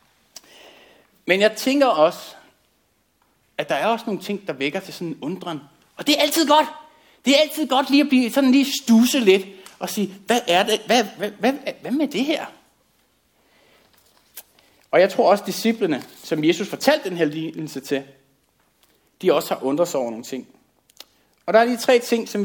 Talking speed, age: 190 wpm, 60-79